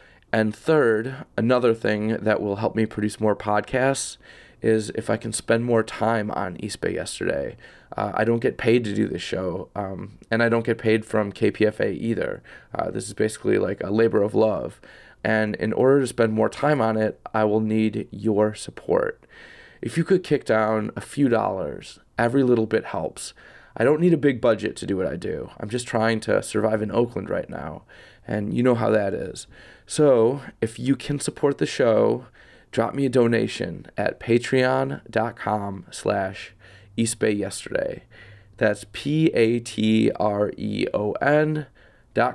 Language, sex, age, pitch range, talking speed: English, male, 20-39, 110-125 Hz, 170 wpm